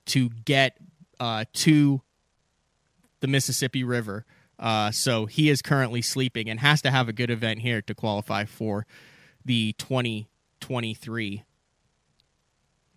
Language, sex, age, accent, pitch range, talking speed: English, male, 30-49, American, 115-140 Hz, 120 wpm